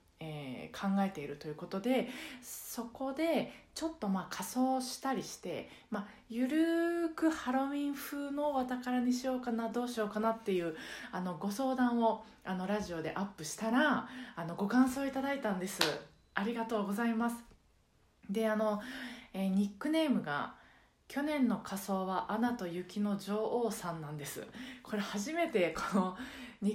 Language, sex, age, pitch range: Japanese, female, 20-39, 195-255 Hz